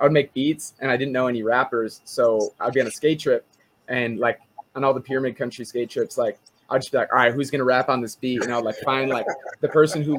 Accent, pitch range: American, 125-150 Hz